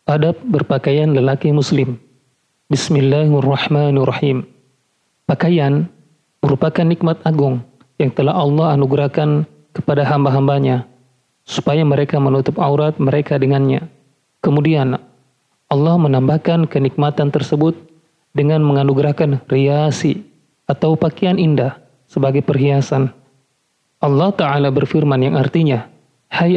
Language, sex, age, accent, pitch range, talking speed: Indonesian, male, 40-59, native, 140-160 Hz, 90 wpm